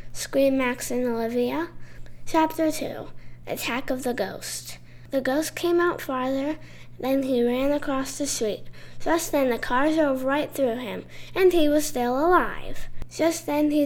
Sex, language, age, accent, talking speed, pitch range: female, English, 10-29, American, 160 wpm, 250-320 Hz